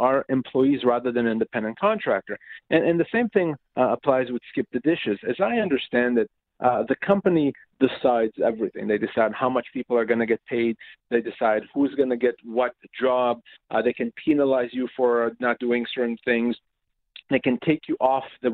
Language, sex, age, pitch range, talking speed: English, male, 40-59, 120-160 Hz, 195 wpm